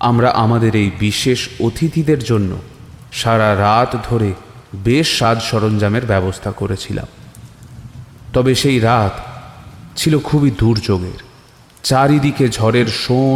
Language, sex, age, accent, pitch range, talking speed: Bengali, male, 30-49, native, 105-130 Hz, 105 wpm